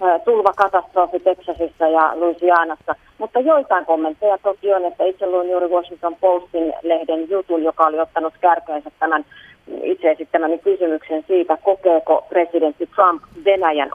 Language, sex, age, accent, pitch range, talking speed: Finnish, female, 30-49, native, 155-175 Hz, 135 wpm